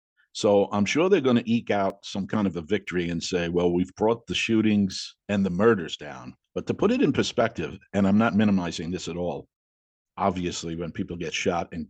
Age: 50-69